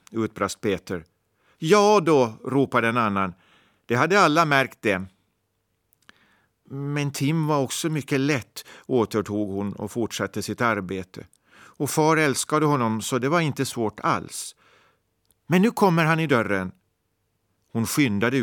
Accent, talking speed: native, 135 wpm